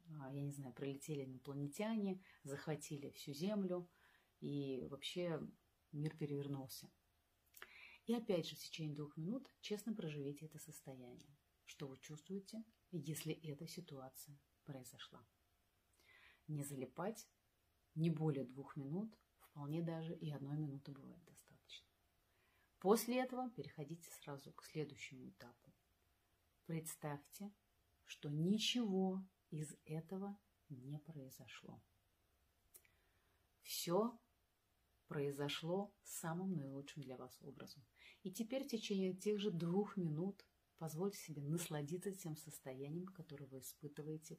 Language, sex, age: Russian, female, 30-49